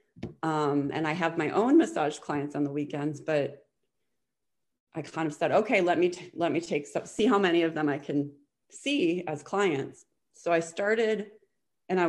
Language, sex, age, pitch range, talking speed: English, female, 30-49, 145-180 Hz, 190 wpm